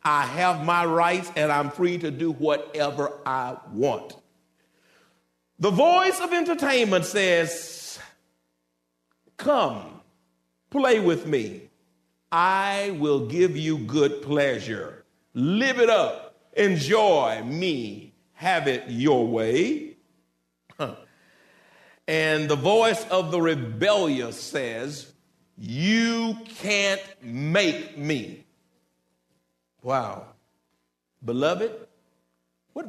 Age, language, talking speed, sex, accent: 50-69, English, 90 wpm, male, American